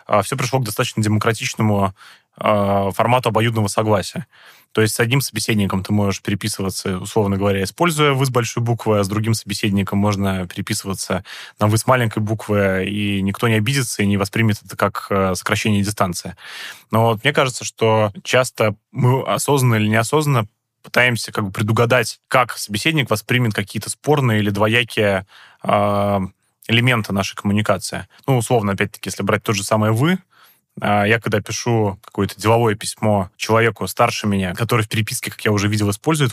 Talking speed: 160 wpm